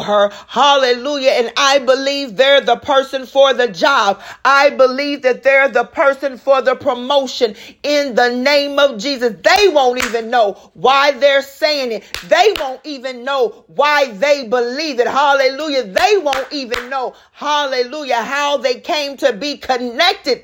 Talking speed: 155 wpm